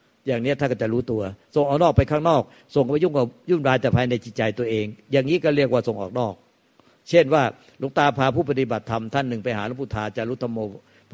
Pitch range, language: 120-150 Hz, Thai